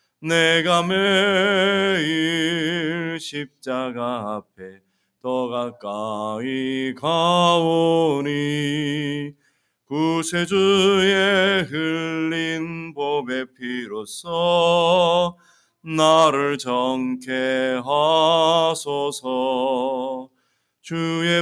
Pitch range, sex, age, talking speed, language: 130-165 Hz, male, 40-59, 40 wpm, English